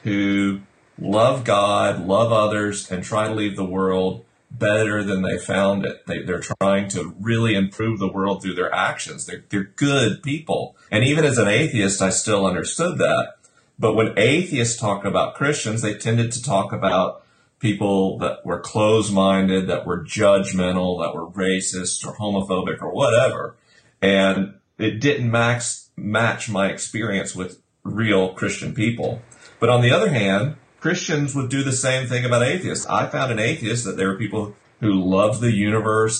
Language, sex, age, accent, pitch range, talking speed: English, male, 40-59, American, 95-120 Hz, 165 wpm